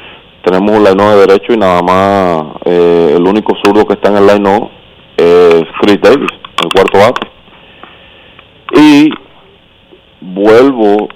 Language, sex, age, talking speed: Spanish, male, 30-49, 130 wpm